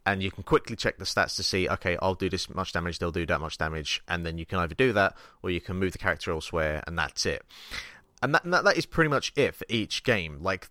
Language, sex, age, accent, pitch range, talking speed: English, male, 30-49, British, 90-110 Hz, 275 wpm